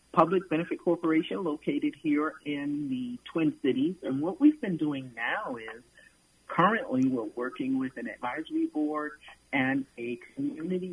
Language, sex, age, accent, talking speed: English, male, 50-69, American, 145 wpm